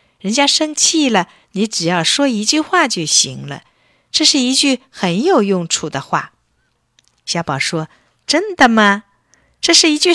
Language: Chinese